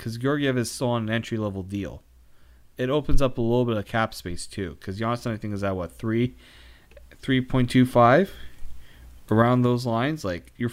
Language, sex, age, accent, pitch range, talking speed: English, male, 30-49, American, 80-125 Hz, 200 wpm